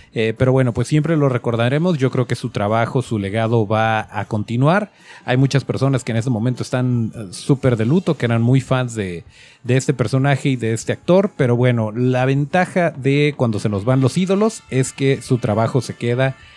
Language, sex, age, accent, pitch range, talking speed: Spanish, male, 30-49, Mexican, 115-150 Hz, 210 wpm